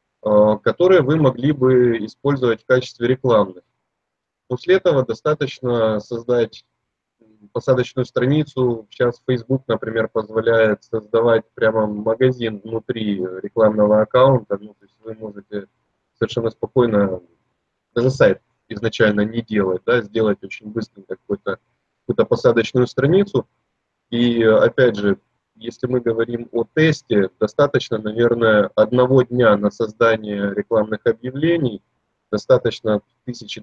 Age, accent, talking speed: 20-39, native, 110 wpm